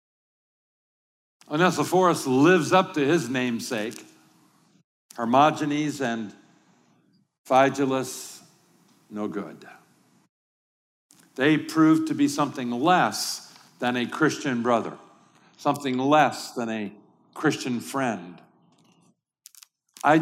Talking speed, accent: 85 wpm, American